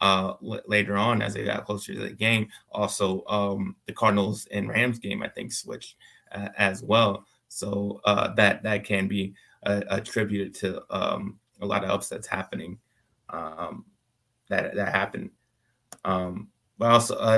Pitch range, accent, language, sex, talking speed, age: 100-110 Hz, American, English, male, 155 wpm, 20-39